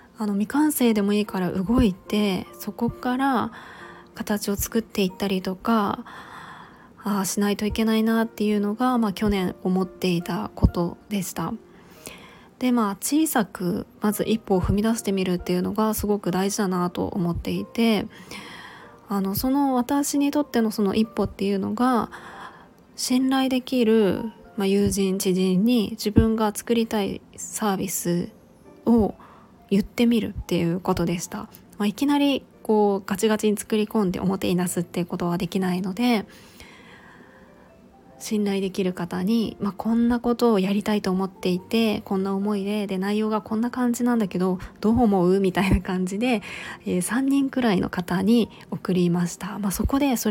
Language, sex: Japanese, female